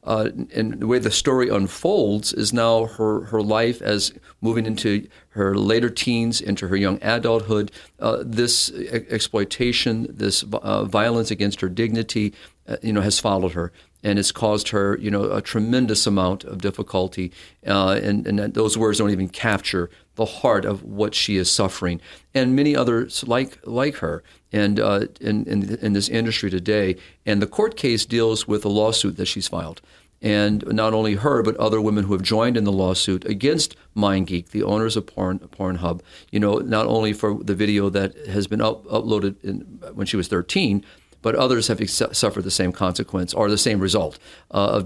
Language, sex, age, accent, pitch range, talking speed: English, male, 50-69, American, 100-115 Hz, 185 wpm